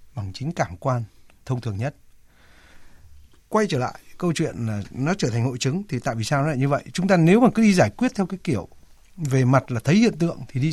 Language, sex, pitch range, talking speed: Vietnamese, male, 115-165 Hz, 250 wpm